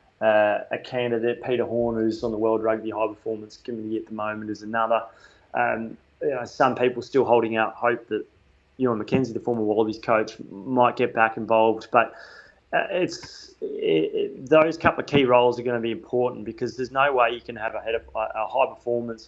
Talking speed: 205 wpm